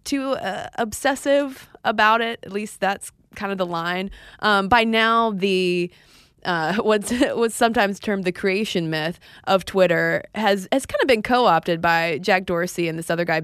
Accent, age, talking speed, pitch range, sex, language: American, 20-39, 175 wpm, 170-220 Hz, female, English